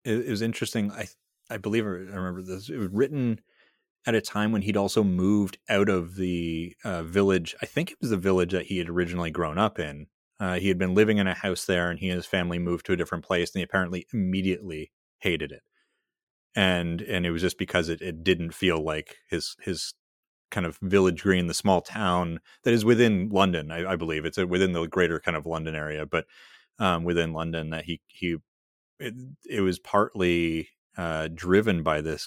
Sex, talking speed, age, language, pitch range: male, 210 wpm, 30-49, English, 85-95 Hz